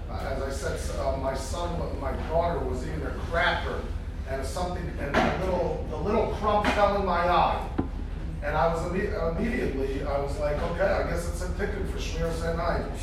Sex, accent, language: male, American, English